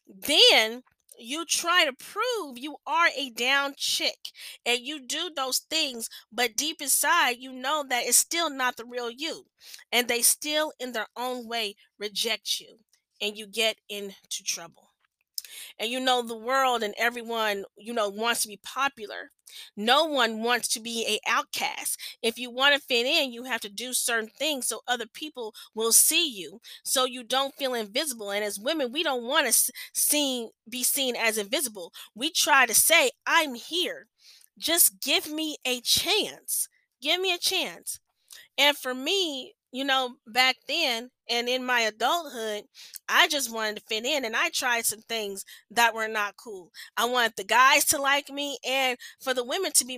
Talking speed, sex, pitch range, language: 180 wpm, female, 235-295 Hz, English